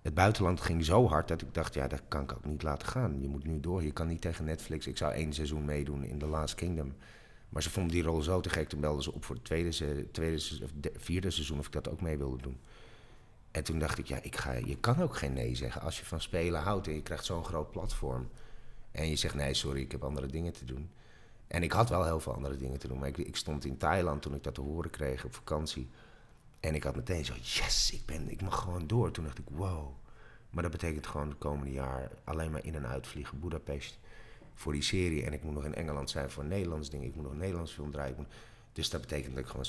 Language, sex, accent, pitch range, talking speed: English, male, Dutch, 70-85 Hz, 255 wpm